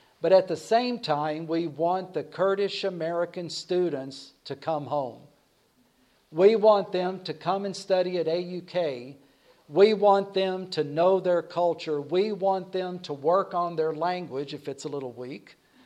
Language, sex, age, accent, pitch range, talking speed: English, male, 50-69, American, 160-195 Hz, 160 wpm